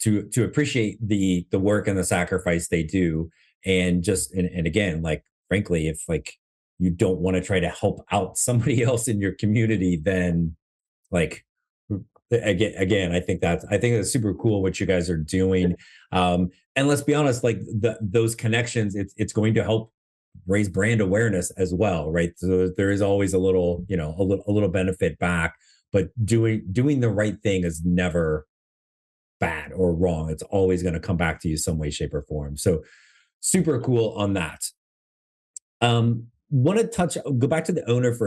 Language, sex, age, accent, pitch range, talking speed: English, male, 30-49, American, 90-115 Hz, 190 wpm